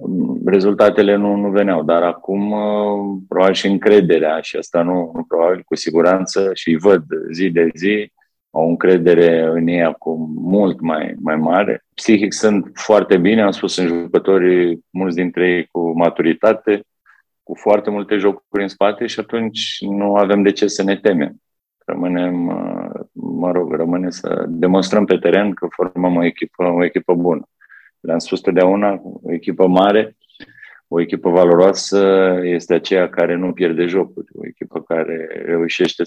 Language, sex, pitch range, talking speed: Romanian, male, 85-100 Hz, 155 wpm